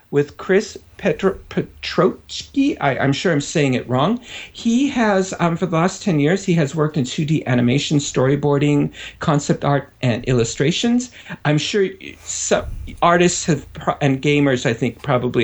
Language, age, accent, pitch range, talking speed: English, 50-69, American, 120-150 Hz, 145 wpm